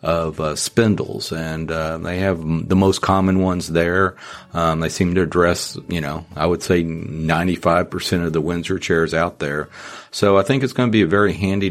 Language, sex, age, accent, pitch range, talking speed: English, male, 50-69, American, 85-110 Hz, 200 wpm